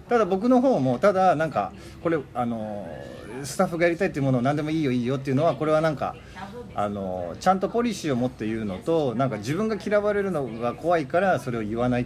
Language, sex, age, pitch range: Japanese, male, 40-59, 120-200 Hz